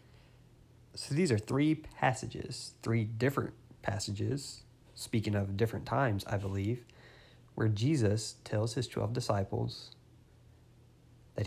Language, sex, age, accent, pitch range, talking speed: English, male, 20-39, American, 110-125 Hz, 110 wpm